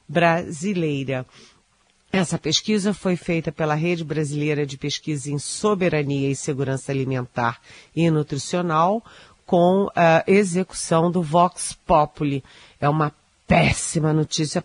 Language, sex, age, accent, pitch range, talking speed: Portuguese, female, 40-59, Brazilian, 145-180 Hz, 110 wpm